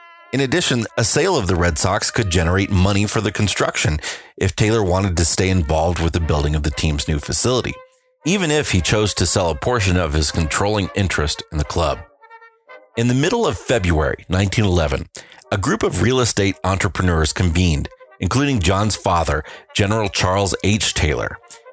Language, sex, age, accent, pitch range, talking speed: English, male, 30-49, American, 85-110 Hz, 175 wpm